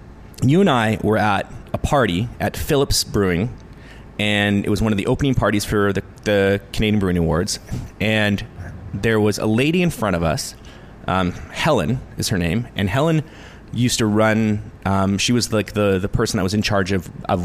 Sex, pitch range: male, 100-120 Hz